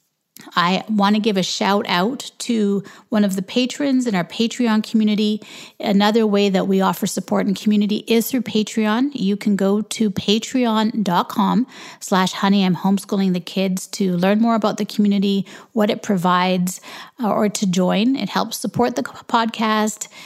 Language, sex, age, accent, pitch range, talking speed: English, female, 30-49, American, 190-220 Hz, 165 wpm